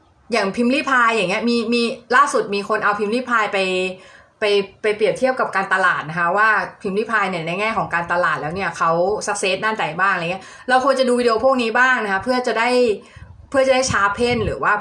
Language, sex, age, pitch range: Thai, female, 20-39, 195-245 Hz